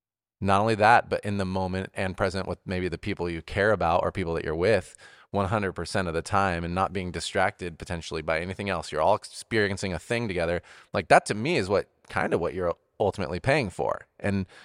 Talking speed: 215 wpm